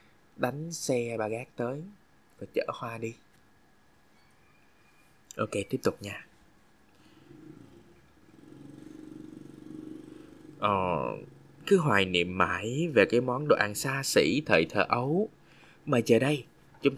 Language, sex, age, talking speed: Vietnamese, male, 20-39, 115 wpm